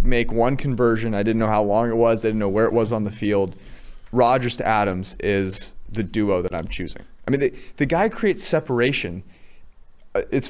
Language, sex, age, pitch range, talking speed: English, male, 30-49, 100-120 Hz, 205 wpm